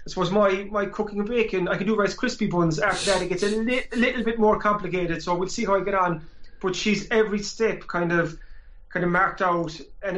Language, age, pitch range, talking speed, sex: English, 30-49, 165-190 Hz, 250 wpm, male